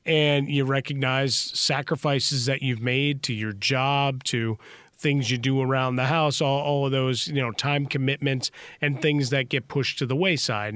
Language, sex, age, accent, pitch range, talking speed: English, male, 30-49, American, 125-140 Hz, 185 wpm